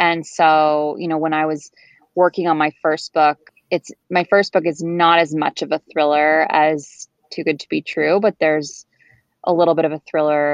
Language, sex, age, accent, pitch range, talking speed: English, female, 20-39, American, 150-165 Hz, 210 wpm